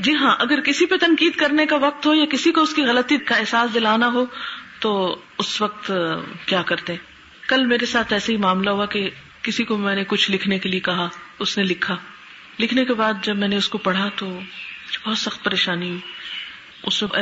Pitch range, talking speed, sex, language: 185-225 Hz, 215 wpm, female, Urdu